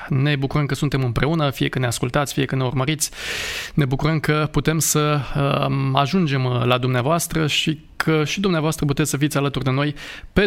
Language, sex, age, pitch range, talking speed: Romanian, male, 20-39, 135-175 Hz, 185 wpm